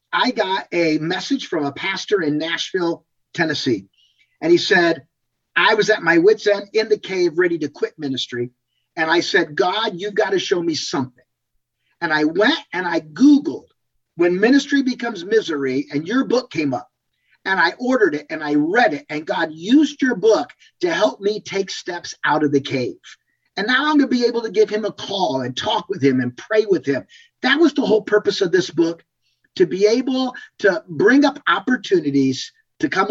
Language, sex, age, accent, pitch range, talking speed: English, male, 50-69, American, 170-280 Hz, 200 wpm